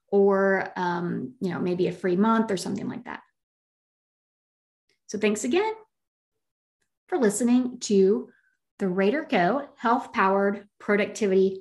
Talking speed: 120 wpm